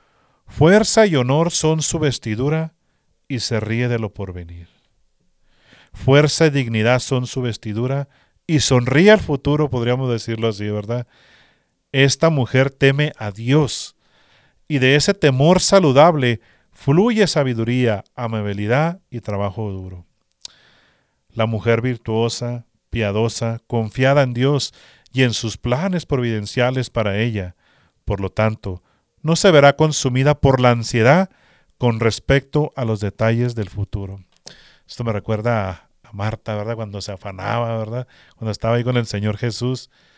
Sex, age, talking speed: male, 40-59, 135 wpm